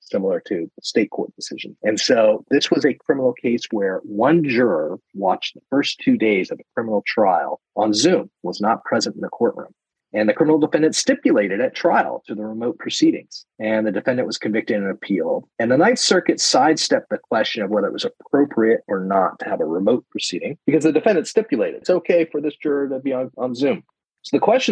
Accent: American